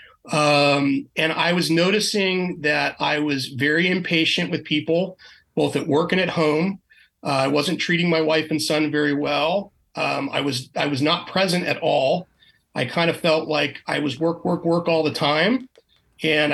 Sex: male